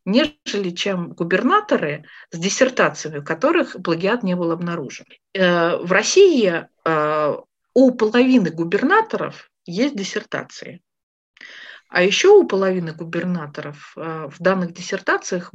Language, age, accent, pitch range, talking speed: Russian, 50-69, native, 180-255 Hz, 100 wpm